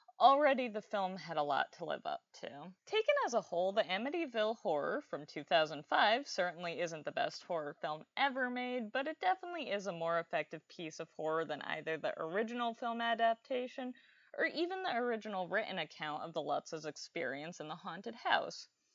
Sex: female